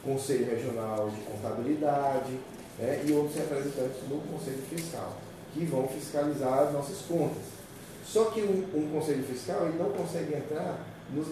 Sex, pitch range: male, 115-155 Hz